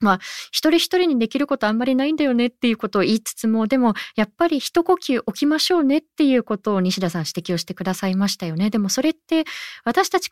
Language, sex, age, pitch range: Japanese, female, 20-39, 180-270 Hz